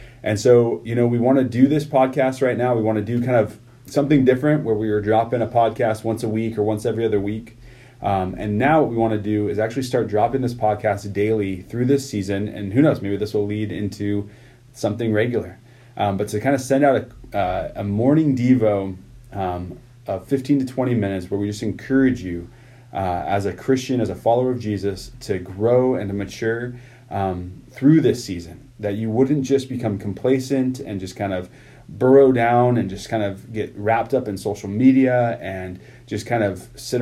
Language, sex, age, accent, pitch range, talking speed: English, male, 30-49, American, 105-125 Hz, 210 wpm